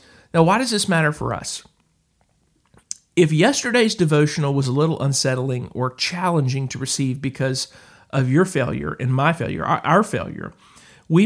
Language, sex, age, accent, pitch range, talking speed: English, male, 50-69, American, 125-160 Hz, 150 wpm